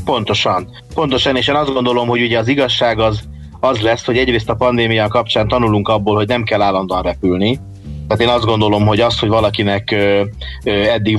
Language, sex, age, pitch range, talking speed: Hungarian, male, 30-49, 100-120 Hz, 180 wpm